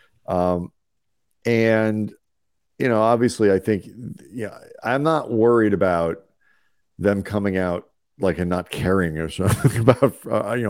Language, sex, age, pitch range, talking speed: English, male, 40-59, 85-115 Hz, 145 wpm